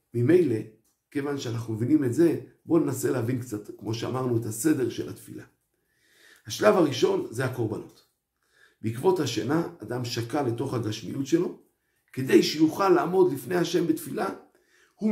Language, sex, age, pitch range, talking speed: Hebrew, male, 50-69, 120-180 Hz, 135 wpm